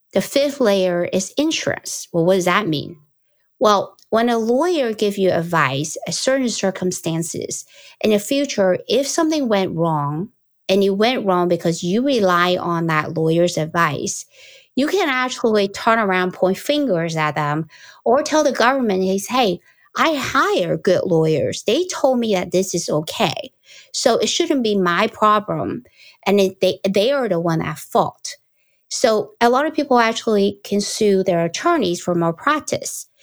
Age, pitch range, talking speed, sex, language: 50-69, 165-235 Hz, 165 wpm, female, English